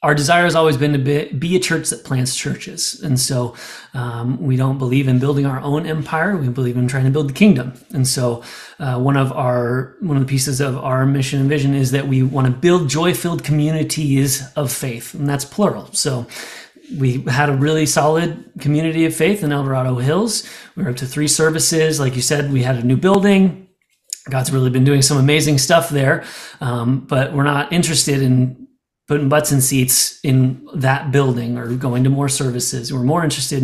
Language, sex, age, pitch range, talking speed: English, male, 30-49, 130-160 Hz, 205 wpm